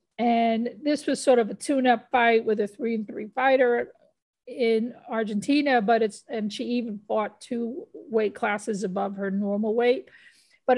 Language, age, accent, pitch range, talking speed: English, 50-69, American, 205-235 Hz, 175 wpm